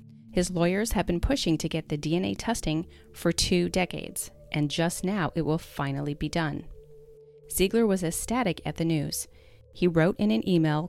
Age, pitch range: 30-49, 150-190 Hz